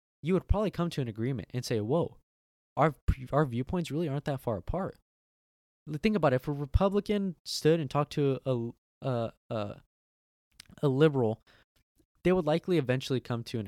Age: 10-29